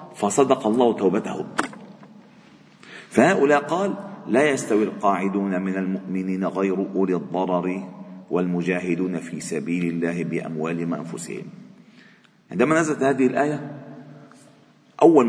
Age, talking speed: 50-69, 95 wpm